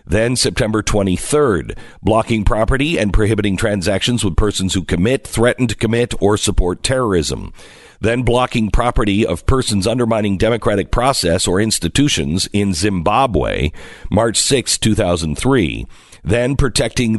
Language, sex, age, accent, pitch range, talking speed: English, male, 50-69, American, 90-115 Hz, 120 wpm